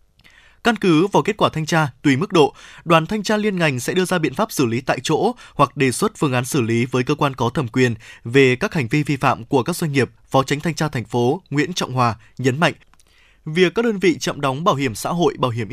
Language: Vietnamese